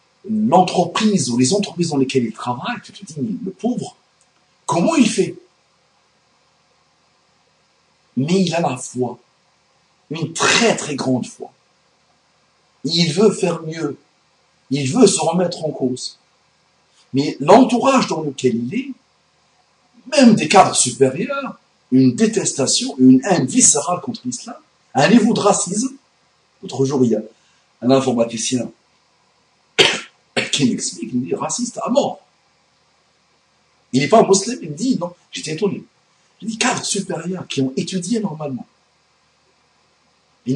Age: 60-79